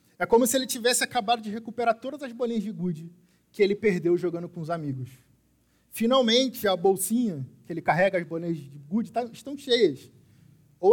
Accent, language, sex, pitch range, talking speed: Brazilian, Portuguese, male, 135-215 Hz, 180 wpm